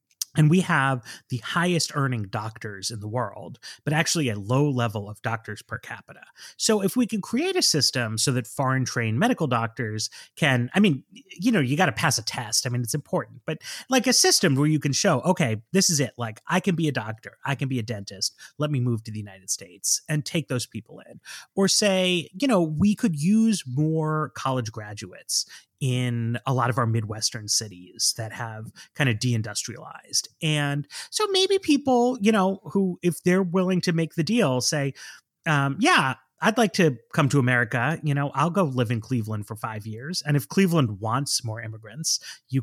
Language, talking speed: English, 205 wpm